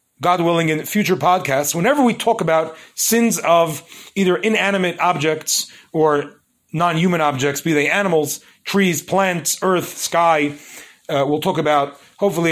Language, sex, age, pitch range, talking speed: English, male, 40-59, 165-215 Hz, 140 wpm